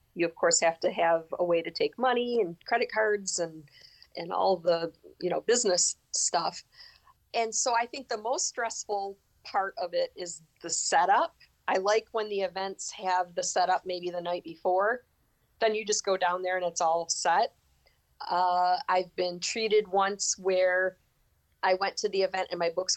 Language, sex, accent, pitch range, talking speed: English, female, American, 175-220 Hz, 185 wpm